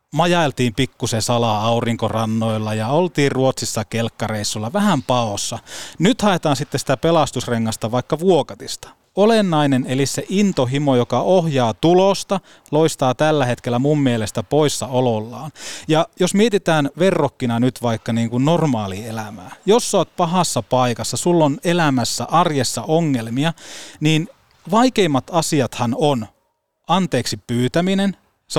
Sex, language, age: male, Finnish, 30-49